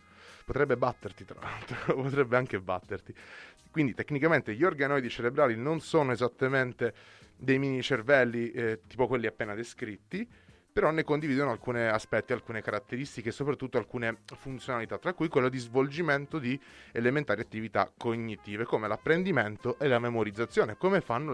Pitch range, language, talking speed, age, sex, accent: 110-135 Hz, Italian, 140 wpm, 30-49, male, native